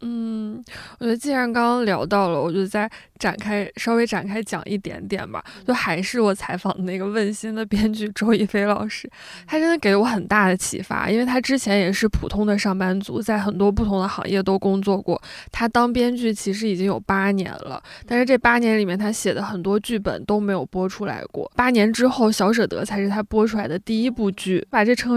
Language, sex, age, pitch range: Chinese, female, 20-39, 195-230 Hz